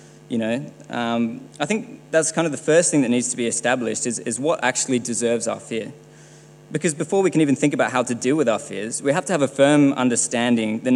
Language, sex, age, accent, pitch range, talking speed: English, male, 20-39, Australian, 115-140 Hz, 240 wpm